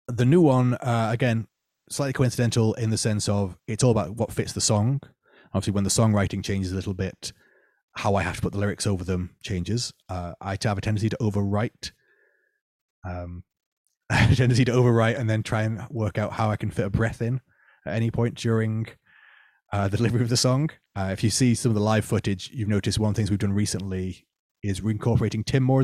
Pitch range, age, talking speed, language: 100-120 Hz, 20-39, 215 wpm, English